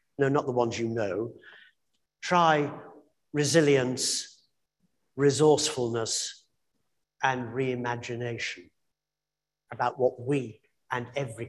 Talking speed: 85 wpm